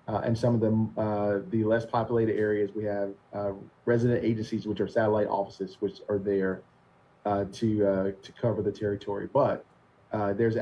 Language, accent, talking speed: English, American, 180 wpm